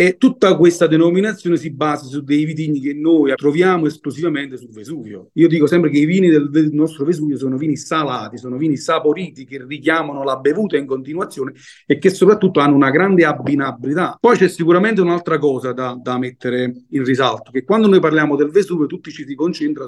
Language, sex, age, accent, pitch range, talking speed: Italian, male, 40-59, native, 135-175 Hz, 195 wpm